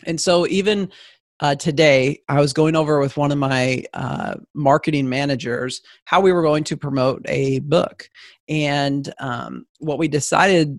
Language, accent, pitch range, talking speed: English, American, 145-175 Hz, 160 wpm